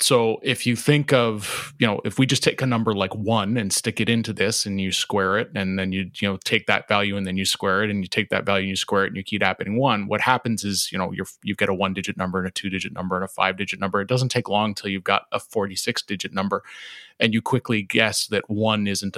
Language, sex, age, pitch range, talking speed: English, male, 30-49, 95-115 Hz, 280 wpm